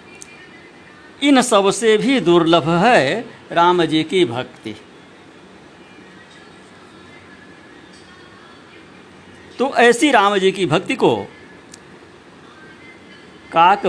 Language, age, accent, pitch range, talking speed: Hindi, 60-79, native, 160-200 Hz, 75 wpm